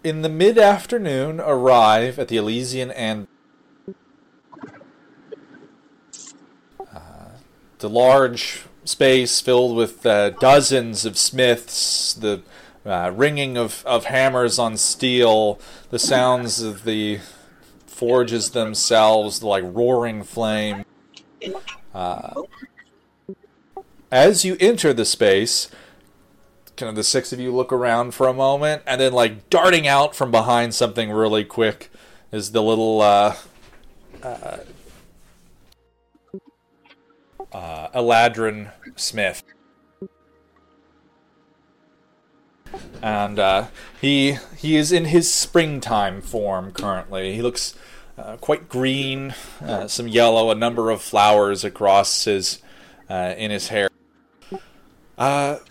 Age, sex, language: 30-49, male, English